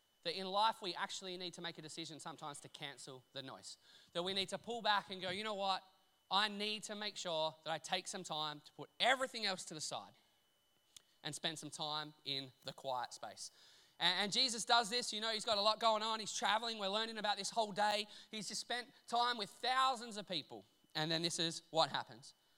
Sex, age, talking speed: male, 20-39, 225 wpm